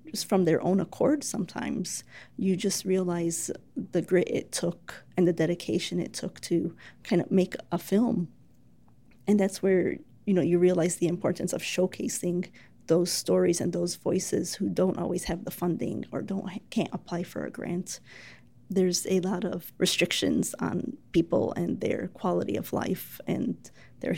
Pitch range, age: 170-190 Hz, 30-49